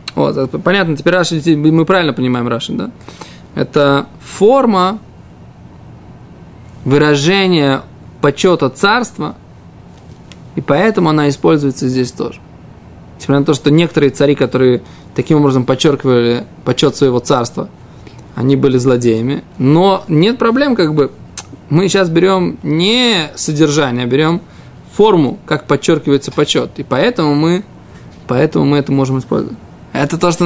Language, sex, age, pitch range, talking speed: Russian, male, 20-39, 135-165 Hz, 125 wpm